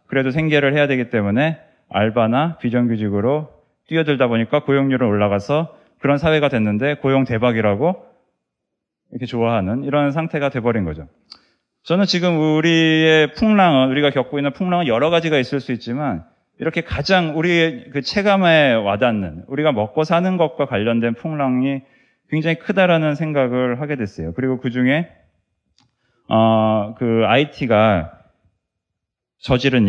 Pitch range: 115-155 Hz